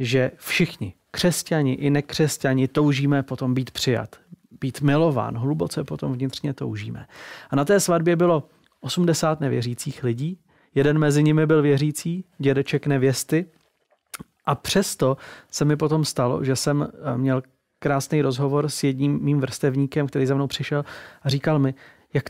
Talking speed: 145 wpm